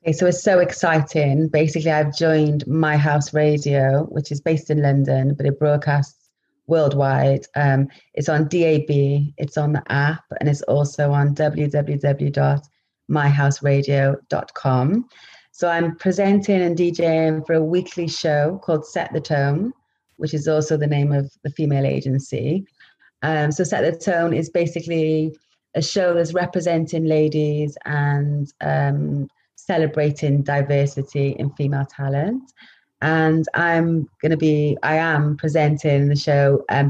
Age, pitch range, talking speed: 30-49, 145-165 Hz, 140 wpm